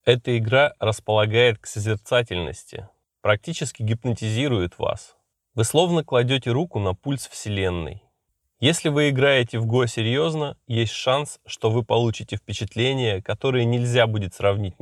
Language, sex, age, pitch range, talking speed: Russian, male, 20-39, 100-125 Hz, 125 wpm